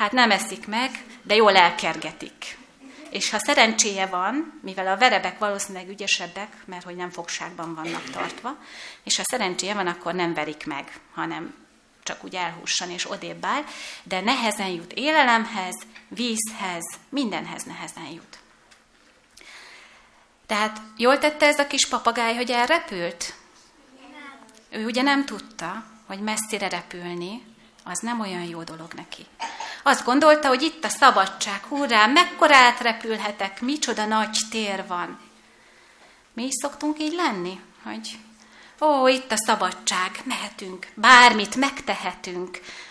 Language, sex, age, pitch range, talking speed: Hungarian, female, 30-49, 190-260 Hz, 130 wpm